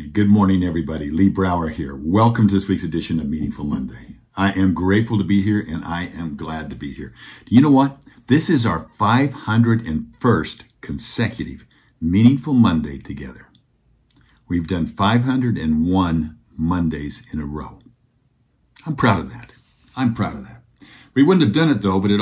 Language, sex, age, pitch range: English, male, 60-79, 85-110 Hz